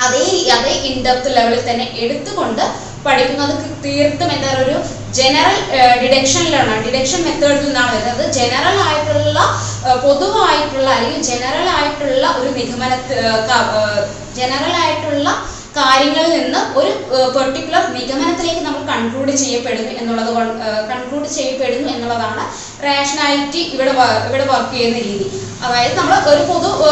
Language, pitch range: Malayalam, 245-300 Hz